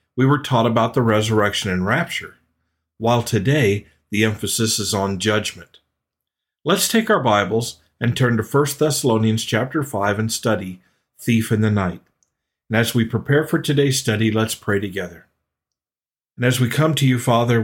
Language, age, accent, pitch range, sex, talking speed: English, 50-69, American, 105-130 Hz, male, 165 wpm